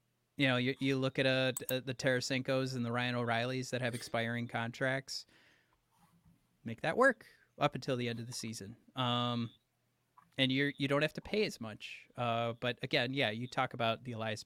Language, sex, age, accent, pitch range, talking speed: English, male, 30-49, American, 120-150 Hz, 190 wpm